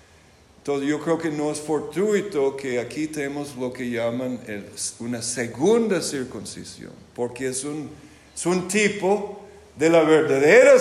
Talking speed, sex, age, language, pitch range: 140 wpm, male, 50-69, Spanish, 115-155 Hz